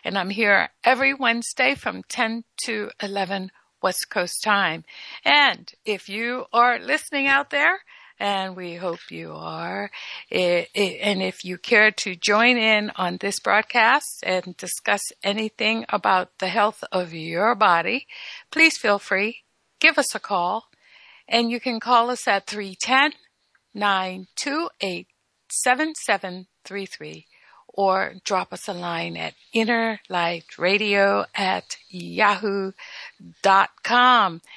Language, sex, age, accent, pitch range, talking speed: English, female, 60-79, American, 185-240 Hz, 115 wpm